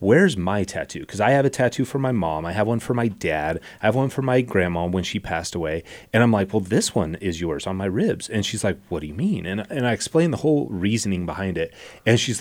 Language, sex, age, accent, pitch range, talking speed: English, male, 30-49, American, 90-120 Hz, 270 wpm